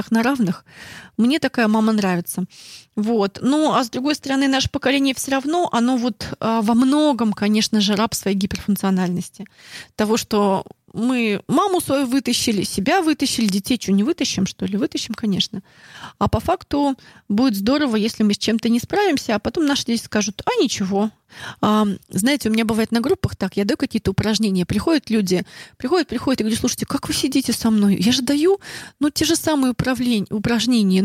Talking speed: 175 wpm